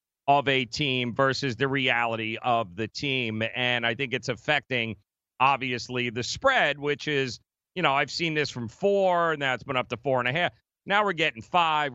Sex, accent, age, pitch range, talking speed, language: male, American, 40-59, 125-185 Hz, 195 wpm, English